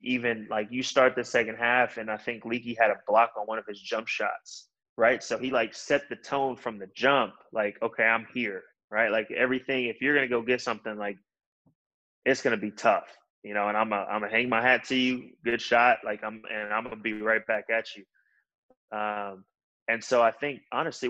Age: 20-39